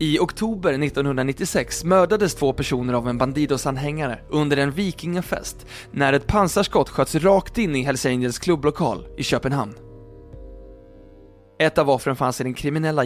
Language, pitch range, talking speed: Swedish, 130-160 Hz, 140 wpm